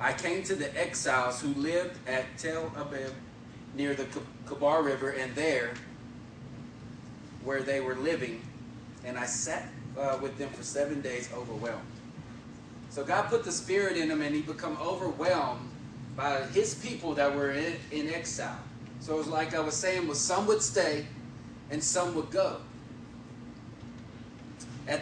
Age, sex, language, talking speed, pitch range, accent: 30-49, male, English, 155 wpm, 130-165 Hz, American